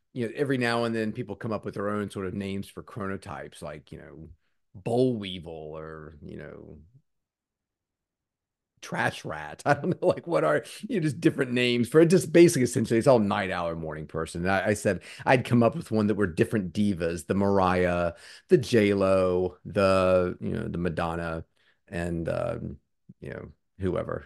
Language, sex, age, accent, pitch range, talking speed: English, male, 40-59, American, 90-120 Hz, 190 wpm